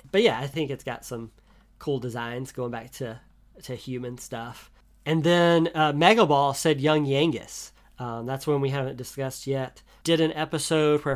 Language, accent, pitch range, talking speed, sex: English, American, 125-145 Hz, 185 wpm, male